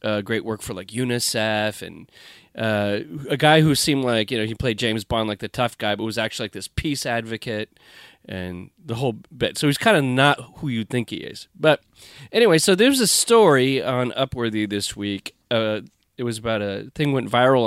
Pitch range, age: 110-150 Hz, 30-49